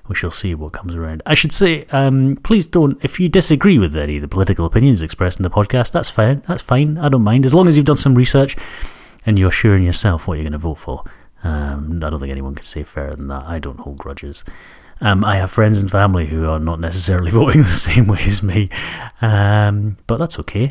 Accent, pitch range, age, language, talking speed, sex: British, 85-125 Hz, 30-49, English, 240 wpm, male